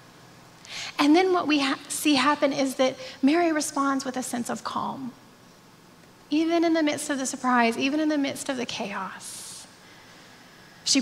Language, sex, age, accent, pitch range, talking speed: English, female, 10-29, American, 250-315 Hz, 165 wpm